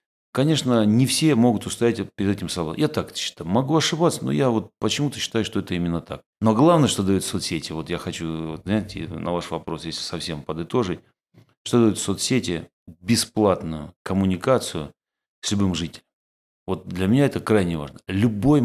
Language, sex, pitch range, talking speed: Russian, male, 90-120 Hz, 170 wpm